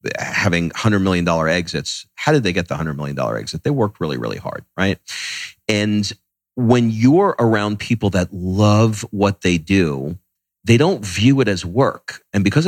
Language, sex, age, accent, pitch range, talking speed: English, male, 40-59, American, 90-115 Hz, 170 wpm